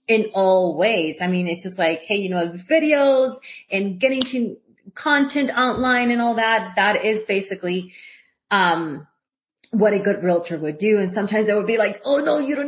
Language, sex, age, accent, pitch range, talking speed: English, female, 30-49, American, 175-220 Hz, 195 wpm